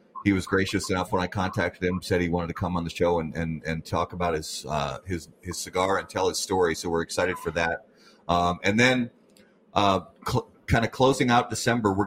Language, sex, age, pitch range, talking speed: English, male, 30-49, 90-110 Hz, 230 wpm